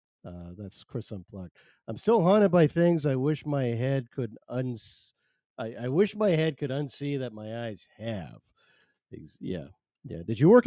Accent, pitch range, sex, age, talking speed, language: American, 105-145 Hz, male, 50-69, 175 wpm, English